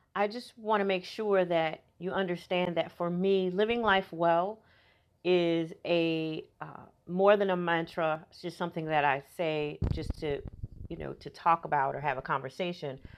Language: English